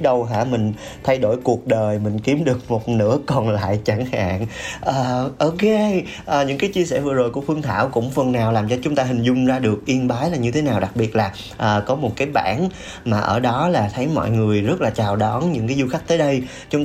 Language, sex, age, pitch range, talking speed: Vietnamese, male, 20-39, 110-155 Hz, 255 wpm